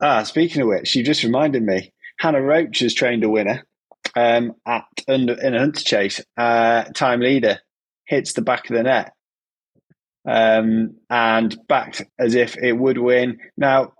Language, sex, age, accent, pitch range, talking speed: English, male, 20-39, British, 100-115 Hz, 165 wpm